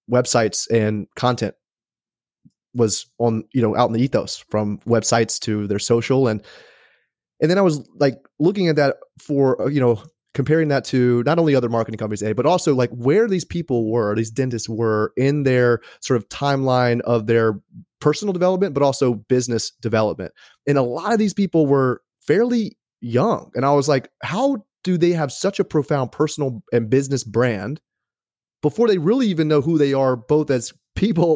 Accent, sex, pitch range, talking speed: American, male, 120-155 Hz, 180 wpm